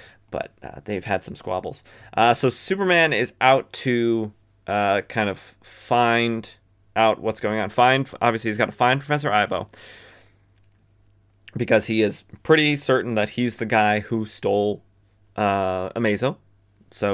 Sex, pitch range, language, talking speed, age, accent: male, 110-145 Hz, English, 145 wpm, 20-39, American